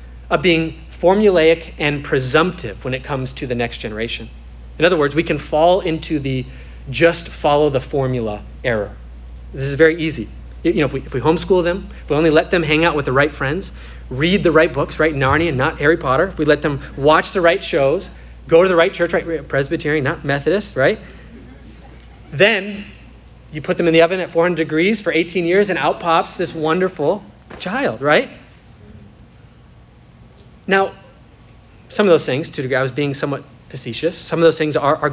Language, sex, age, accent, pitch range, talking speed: English, male, 30-49, American, 120-165 Hz, 190 wpm